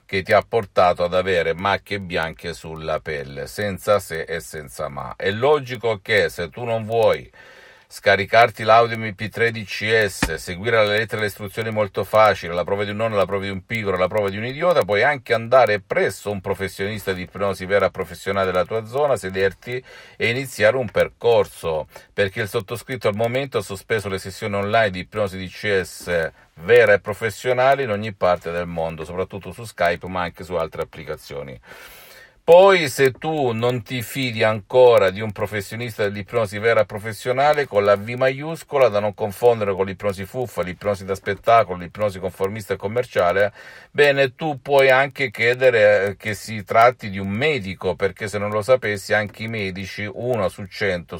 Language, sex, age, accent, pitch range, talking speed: Italian, male, 50-69, native, 95-120 Hz, 175 wpm